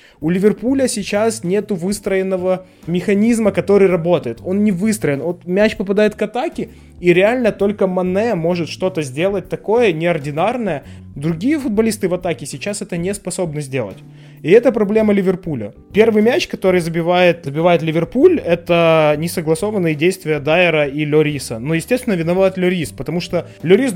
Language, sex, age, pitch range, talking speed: Ukrainian, male, 20-39, 155-200 Hz, 145 wpm